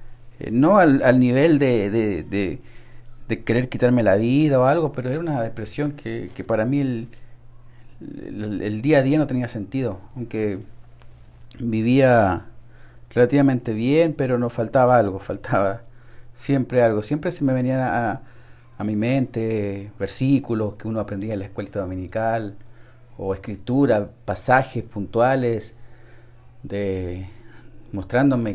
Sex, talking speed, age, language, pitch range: male, 135 wpm, 40-59, Spanish, 105-125 Hz